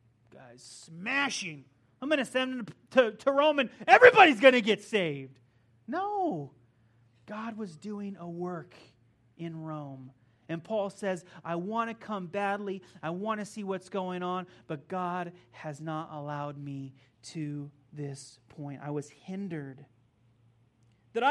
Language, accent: English, American